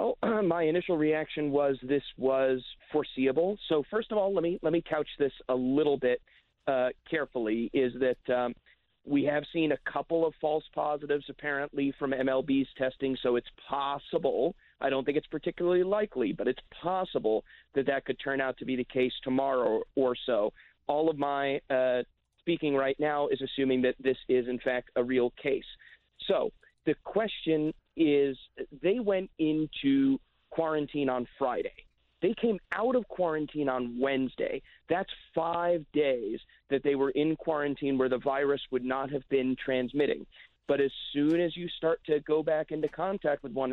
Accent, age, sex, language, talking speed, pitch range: American, 40-59, male, English, 170 wpm, 130-160 Hz